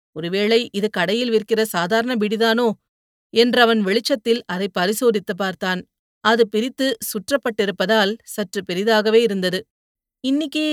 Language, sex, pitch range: Tamil, female, 190-235 Hz